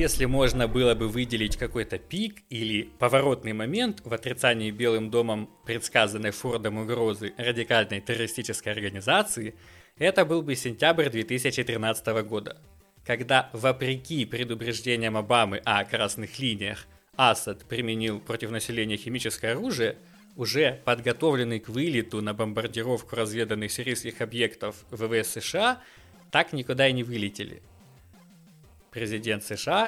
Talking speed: 115 wpm